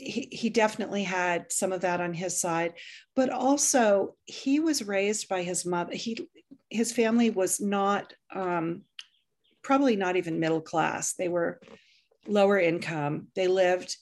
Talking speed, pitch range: 145 wpm, 175-210 Hz